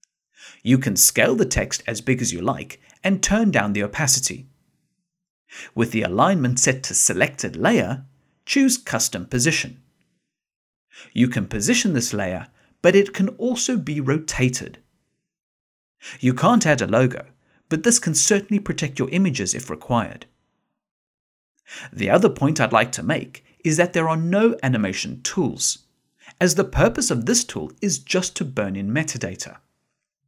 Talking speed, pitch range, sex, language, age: 150 wpm, 125-190 Hz, male, English, 50-69